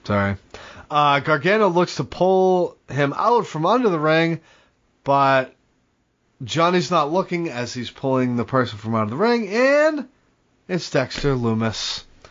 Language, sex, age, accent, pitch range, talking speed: English, male, 30-49, American, 120-175 Hz, 145 wpm